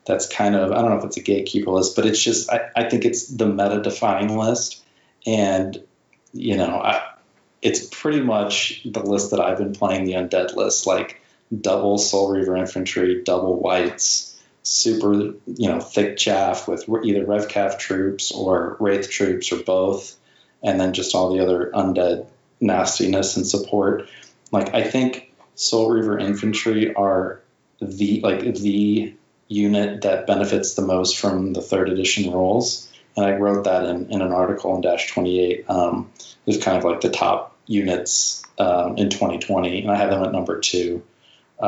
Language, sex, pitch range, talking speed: English, male, 90-105 Hz, 170 wpm